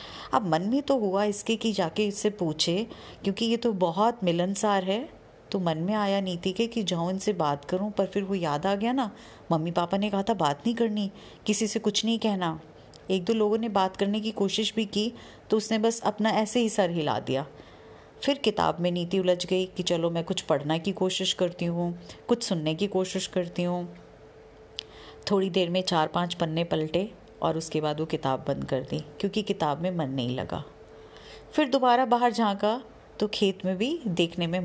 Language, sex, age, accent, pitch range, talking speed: Hindi, female, 30-49, native, 160-210 Hz, 205 wpm